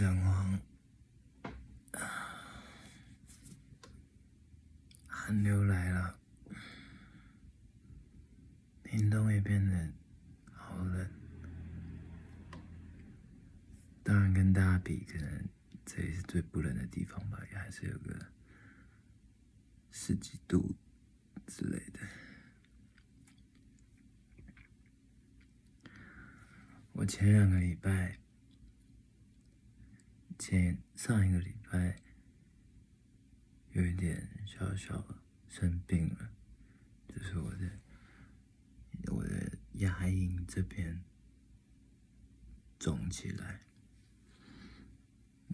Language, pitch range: Chinese, 90-105 Hz